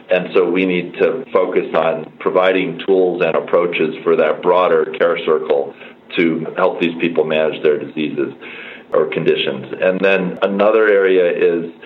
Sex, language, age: male, English, 40-59